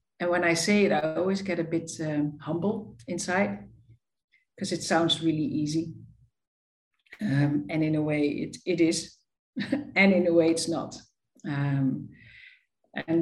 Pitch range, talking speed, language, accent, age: 145-175 Hz, 155 wpm, English, Dutch, 50-69